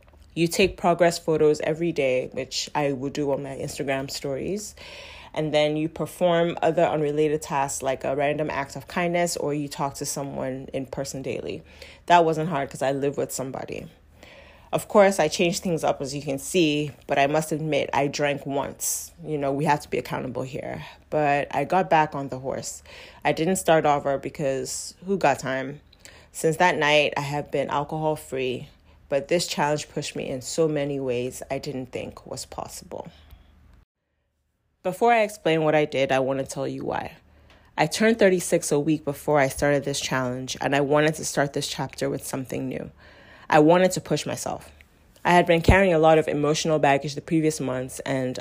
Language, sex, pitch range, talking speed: English, female, 135-160 Hz, 190 wpm